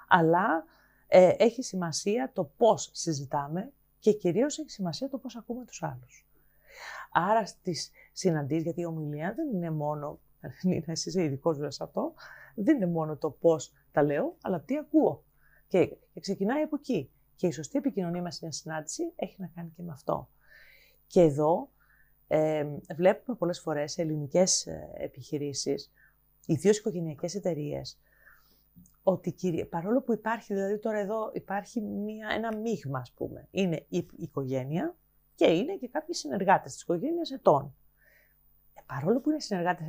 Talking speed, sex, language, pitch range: 150 wpm, female, Greek, 155-240 Hz